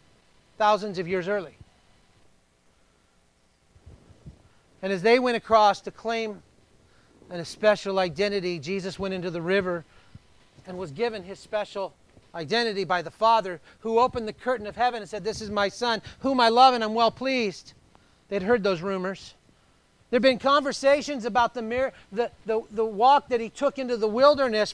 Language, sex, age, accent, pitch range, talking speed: English, male, 40-59, American, 200-245 Hz, 165 wpm